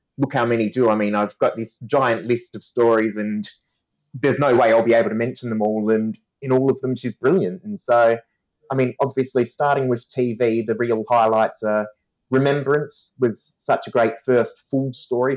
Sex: male